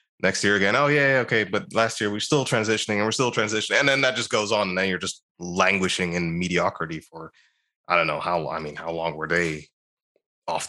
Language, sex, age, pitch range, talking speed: English, male, 20-39, 85-105 Hz, 240 wpm